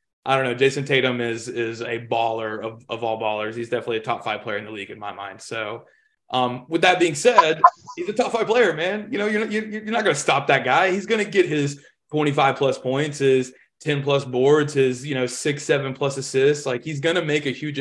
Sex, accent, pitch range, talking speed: male, American, 125-160 Hz, 235 wpm